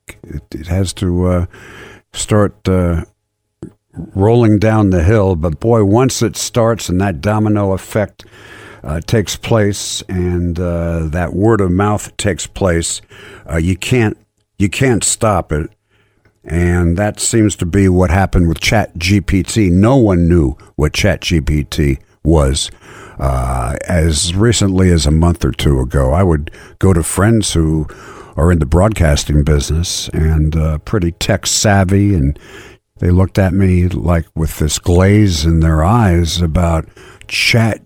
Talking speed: 145 wpm